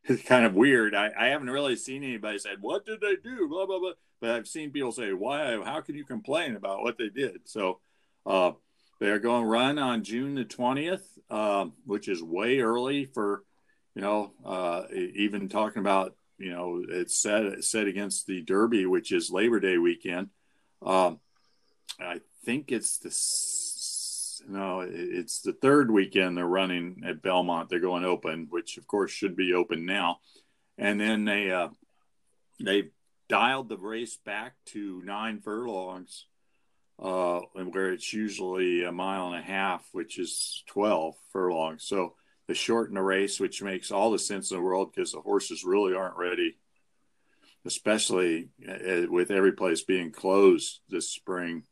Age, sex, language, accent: 50-69, male, English, American